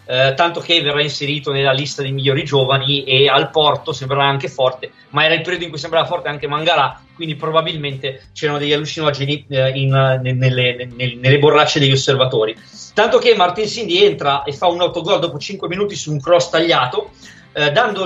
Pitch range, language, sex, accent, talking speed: 140-185 Hz, Italian, male, native, 195 wpm